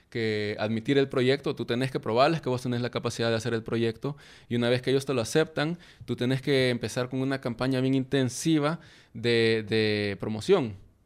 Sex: male